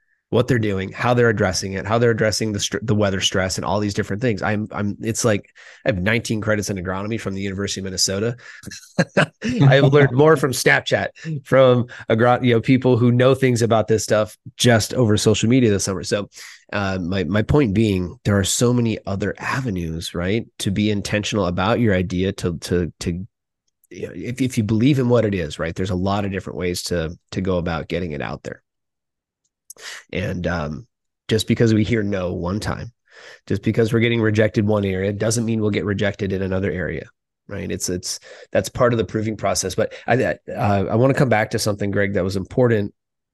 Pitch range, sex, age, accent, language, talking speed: 95-115 Hz, male, 30-49, American, English, 210 wpm